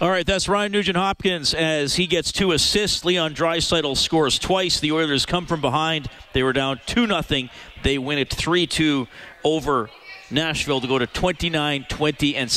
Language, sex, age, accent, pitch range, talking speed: English, male, 40-59, American, 130-170 Hz, 165 wpm